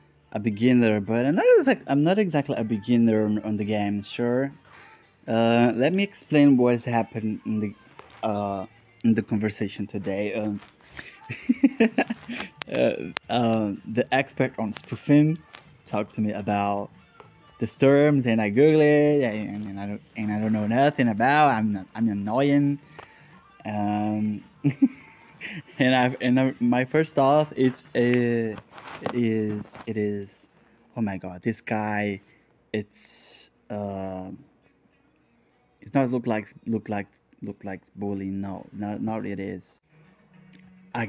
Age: 20-39